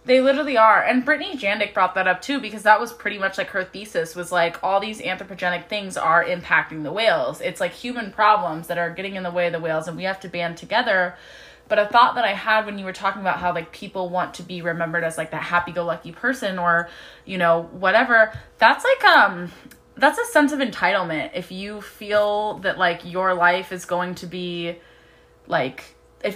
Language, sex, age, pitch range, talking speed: English, female, 20-39, 175-210 Hz, 215 wpm